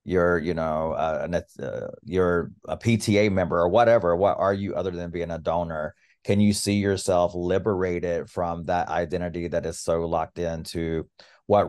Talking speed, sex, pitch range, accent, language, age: 170 wpm, male, 85-95 Hz, American, English, 30-49